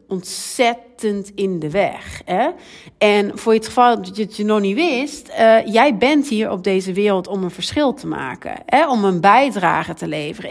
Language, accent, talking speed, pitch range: Dutch, Dutch, 175 wpm, 185-235 Hz